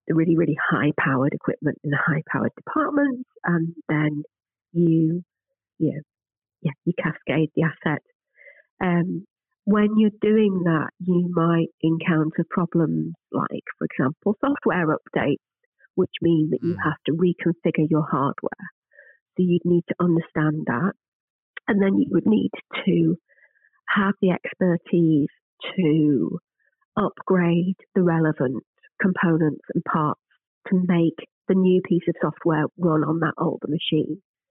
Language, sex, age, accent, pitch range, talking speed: English, female, 40-59, British, 160-190 Hz, 135 wpm